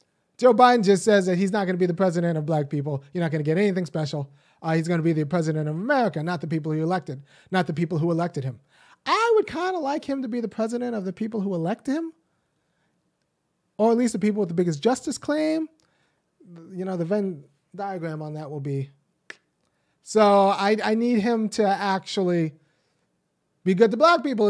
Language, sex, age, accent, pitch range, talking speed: English, male, 30-49, American, 165-220 Hz, 220 wpm